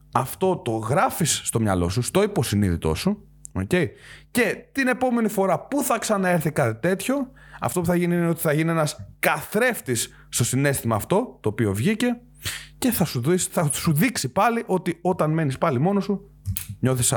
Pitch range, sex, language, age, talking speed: 110-160 Hz, male, Greek, 30-49, 175 wpm